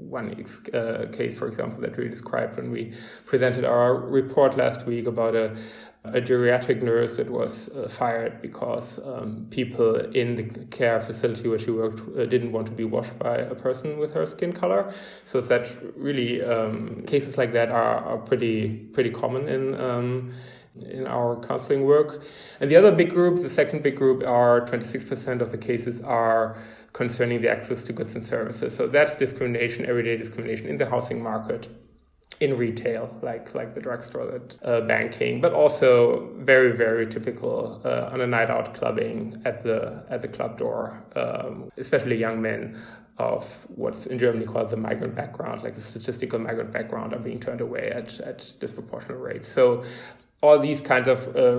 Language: English